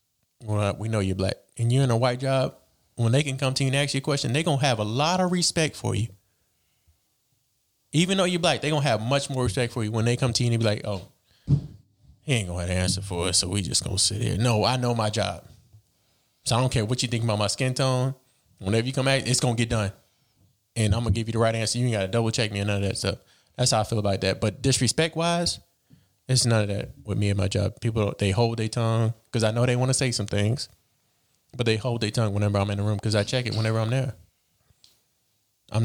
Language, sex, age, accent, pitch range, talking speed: English, male, 20-39, American, 105-125 Hz, 270 wpm